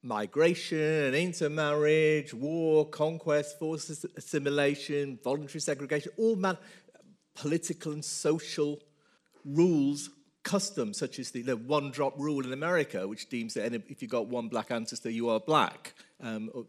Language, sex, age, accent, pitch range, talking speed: English, male, 40-59, British, 135-185 Hz, 130 wpm